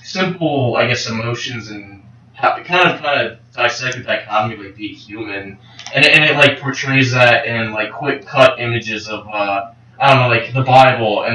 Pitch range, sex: 110-130 Hz, male